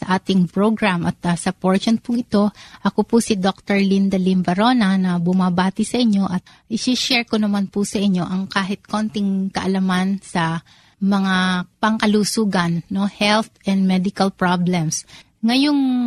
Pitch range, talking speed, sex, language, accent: 185-215 Hz, 145 wpm, female, Filipino, native